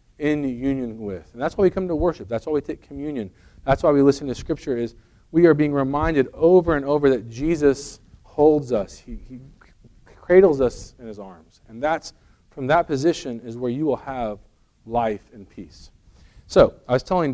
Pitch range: 115-160 Hz